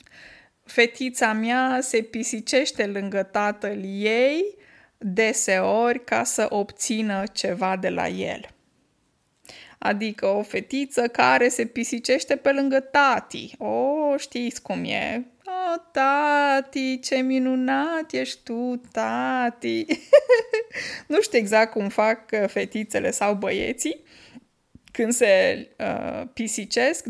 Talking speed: 105 wpm